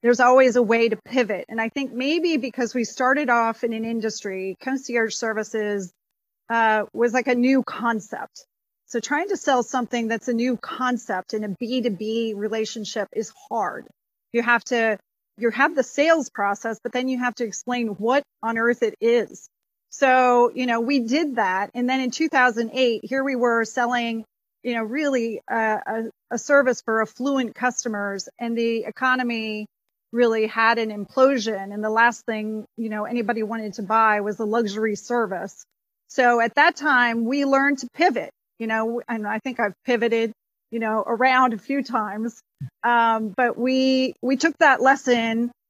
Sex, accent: female, American